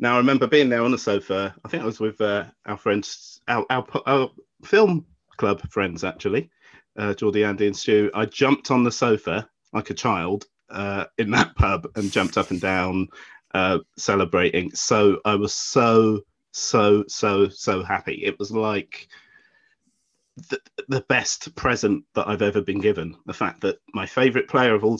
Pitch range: 100-130 Hz